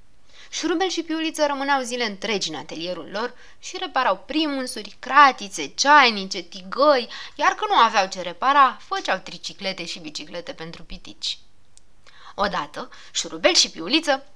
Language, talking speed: Romanian, 130 wpm